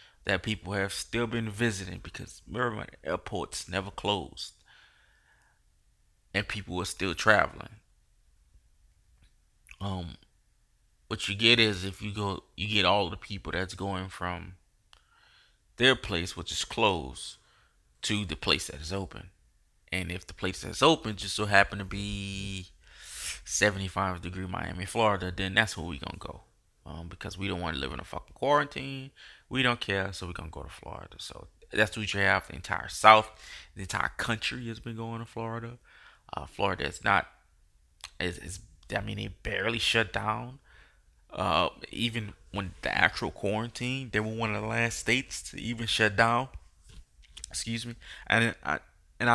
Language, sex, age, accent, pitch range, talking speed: English, male, 20-39, American, 90-110 Hz, 165 wpm